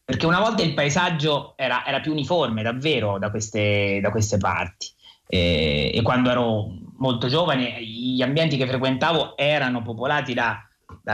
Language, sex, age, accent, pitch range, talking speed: Italian, male, 30-49, native, 115-145 Hz, 155 wpm